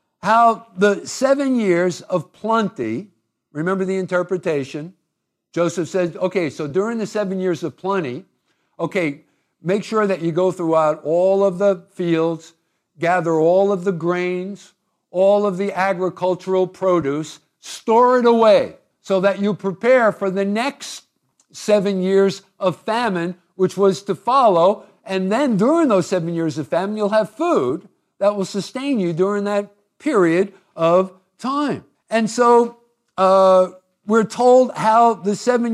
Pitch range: 180-235 Hz